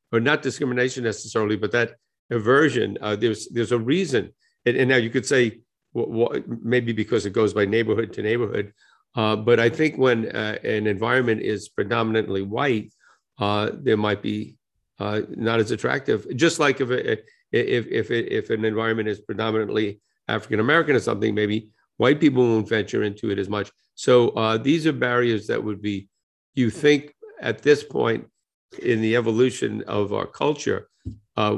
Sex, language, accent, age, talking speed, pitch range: male, English, American, 50-69, 170 wpm, 105-125 Hz